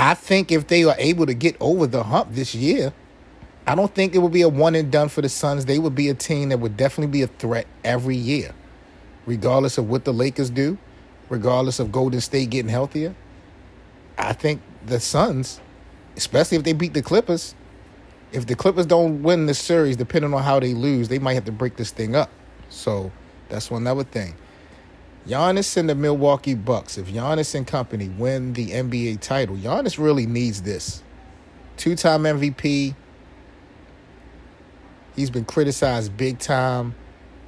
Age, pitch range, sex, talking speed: 30-49, 110-145 Hz, male, 175 wpm